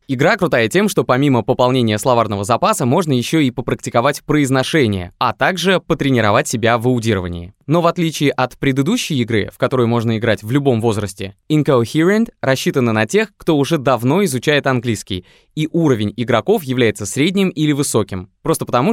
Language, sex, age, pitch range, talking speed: Russian, male, 20-39, 115-155 Hz, 160 wpm